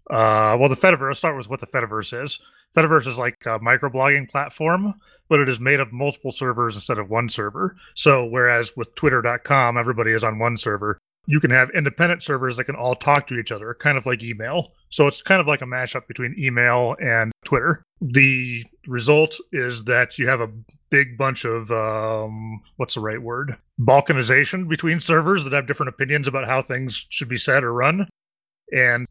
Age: 30-49